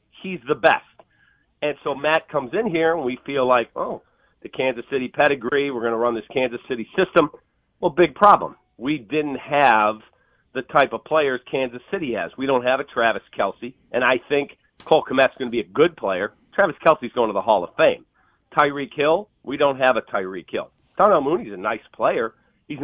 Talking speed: 205 wpm